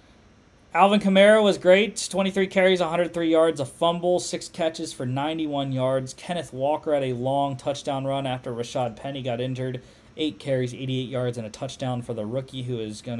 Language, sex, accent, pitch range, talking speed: English, male, American, 120-160 Hz, 180 wpm